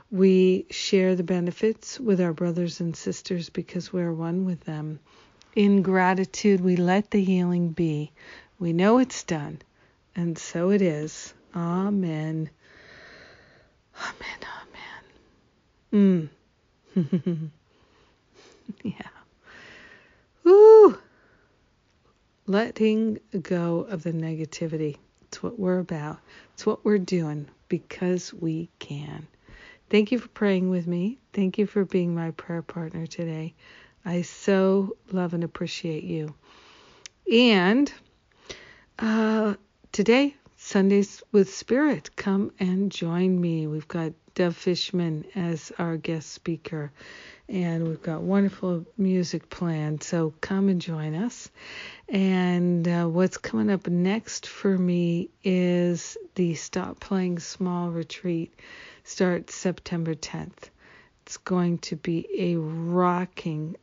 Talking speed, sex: 115 wpm, female